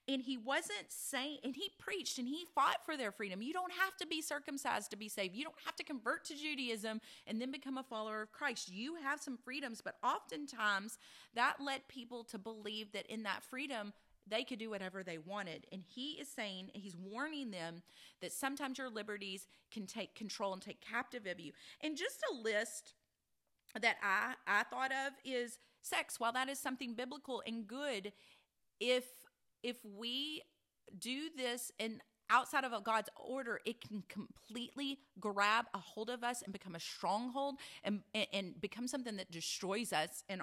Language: English